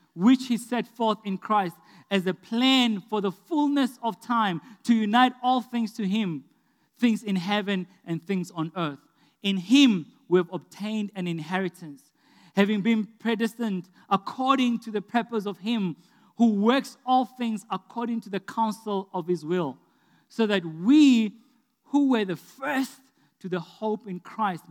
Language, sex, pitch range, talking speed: English, male, 180-235 Hz, 160 wpm